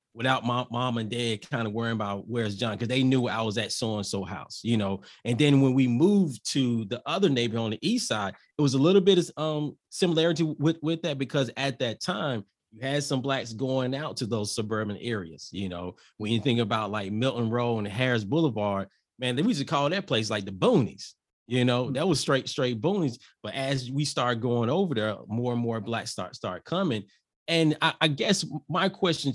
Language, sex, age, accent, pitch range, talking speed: English, male, 30-49, American, 115-145 Hz, 225 wpm